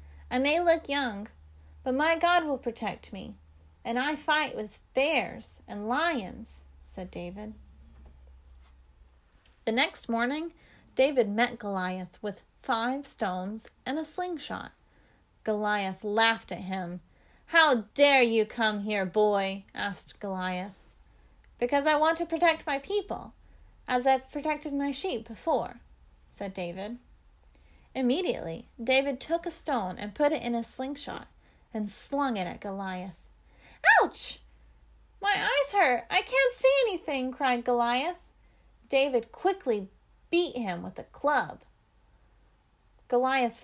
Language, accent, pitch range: English, American, 195-280 Hz